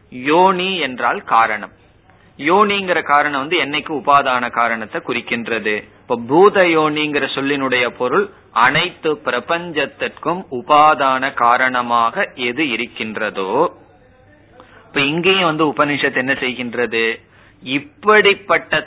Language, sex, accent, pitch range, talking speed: Tamil, male, native, 120-170 Hz, 90 wpm